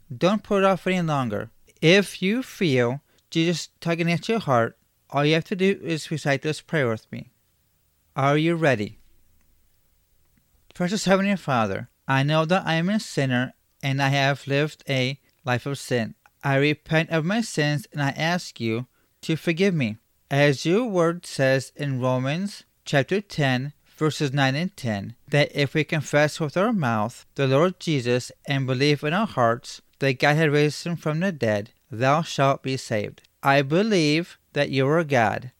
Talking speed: 175 wpm